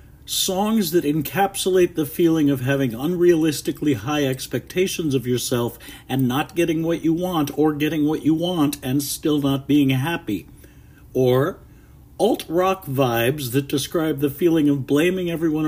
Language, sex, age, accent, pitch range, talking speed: English, male, 60-79, American, 135-170 Hz, 145 wpm